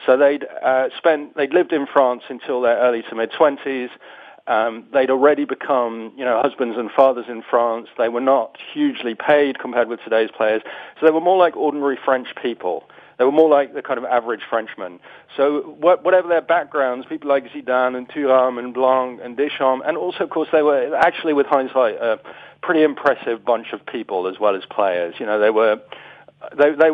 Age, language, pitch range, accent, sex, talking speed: 40-59, English, 115-145 Hz, British, male, 200 wpm